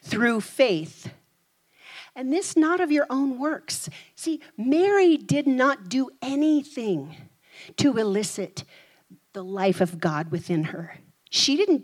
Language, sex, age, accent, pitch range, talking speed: English, female, 40-59, American, 185-275 Hz, 125 wpm